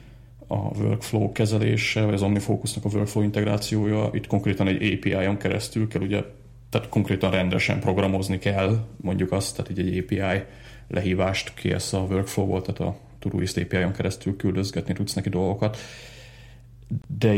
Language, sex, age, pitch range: Hungarian, male, 30-49, 90-110 Hz